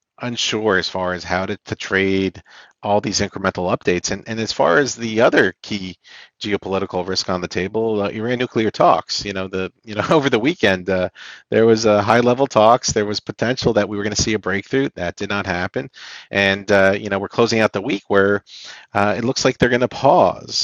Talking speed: 225 wpm